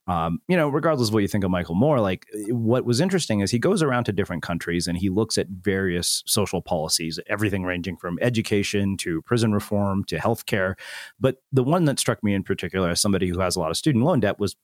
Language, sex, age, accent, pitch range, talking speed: English, male, 30-49, American, 95-130 Hz, 235 wpm